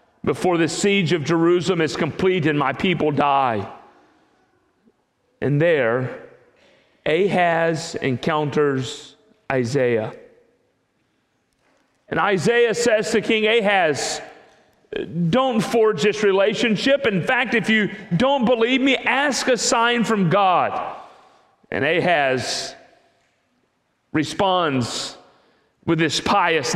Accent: American